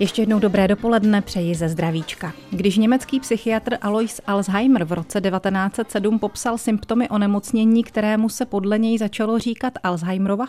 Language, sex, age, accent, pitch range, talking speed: Czech, female, 30-49, native, 185-225 Hz, 150 wpm